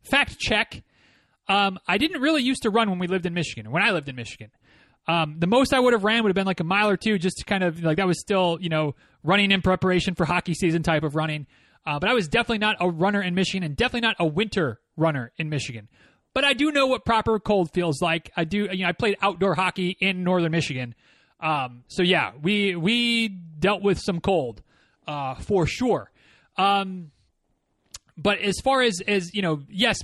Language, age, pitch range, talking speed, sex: English, 30-49, 160-205 Hz, 225 wpm, male